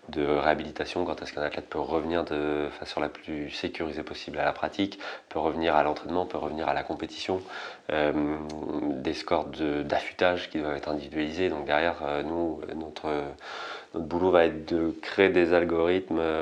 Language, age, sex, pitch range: French, 30-49, male, 75-90 Hz